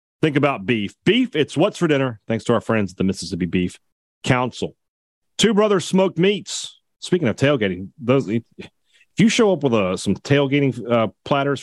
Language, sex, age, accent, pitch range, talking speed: English, male, 40-59, American, 105-145 Hz, 175 wpm